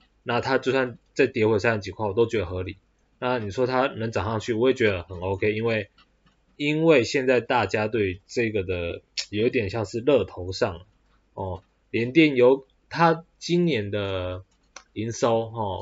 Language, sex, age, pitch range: Chinese, male, 20-39, 95-130 Hz